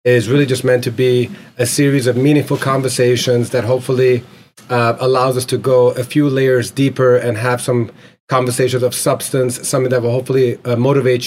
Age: 30-49